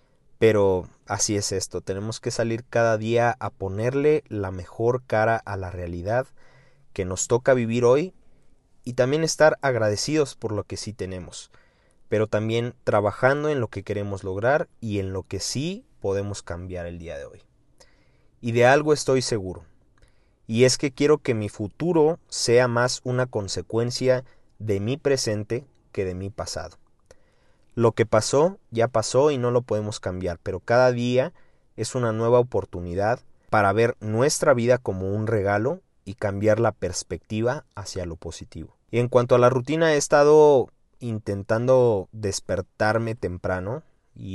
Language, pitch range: Spanish, 100-125 Hz